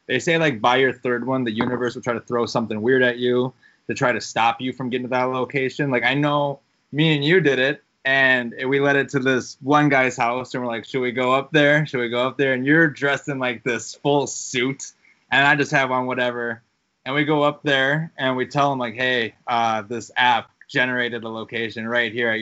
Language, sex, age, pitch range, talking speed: English, male, 20-39, 120-140 Hz, 245 wpm